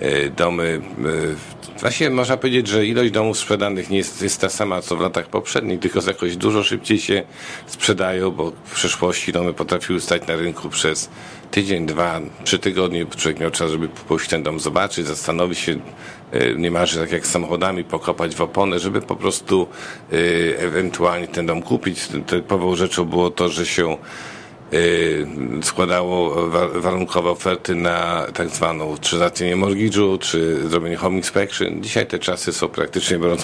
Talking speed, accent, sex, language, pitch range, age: 155 wpm, native, male, Polish, 85-105 Hz, 50-69